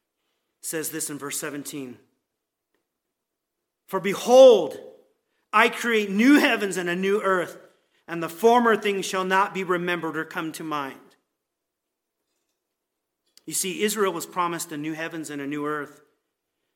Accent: American